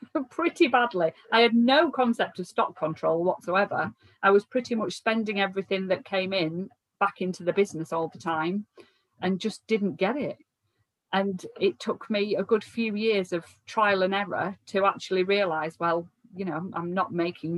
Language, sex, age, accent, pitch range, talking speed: English, female, 40-59, British, 175-205 Hz, 180 wpm